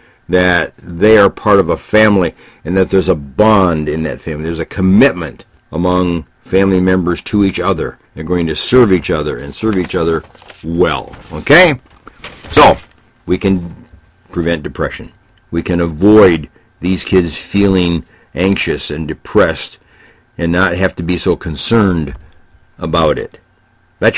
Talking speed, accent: 150 wpm, American